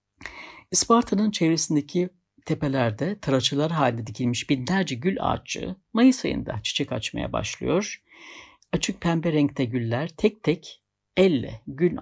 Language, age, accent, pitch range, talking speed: Turkish, 60-79, native, 130-175 Hz, 110 wpm